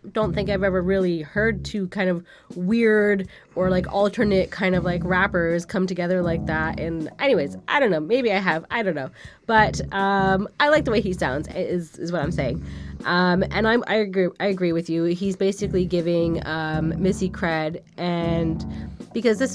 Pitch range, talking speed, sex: 165-195 Hz, 195 wpm, female